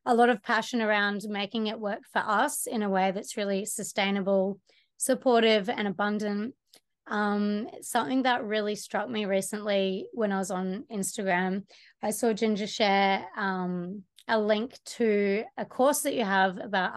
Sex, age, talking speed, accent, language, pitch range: female, 20-39, 160 wpm, Australian, English, 195-235 Hz